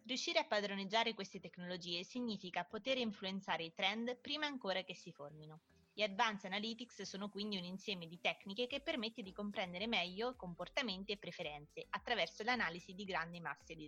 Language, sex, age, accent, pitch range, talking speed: Italian, female, 20-39, native, 175-225 Hz, 165 wpm